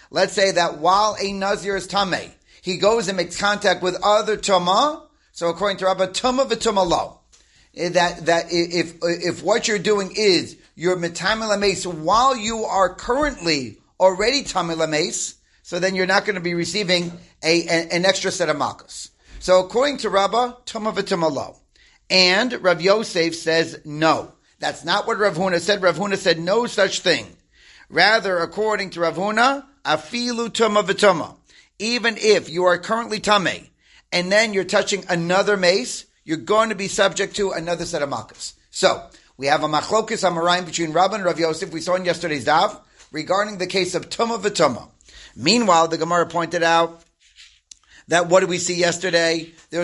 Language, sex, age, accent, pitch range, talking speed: English, male, 40-59, American, 170-210 Hz, 165 wpm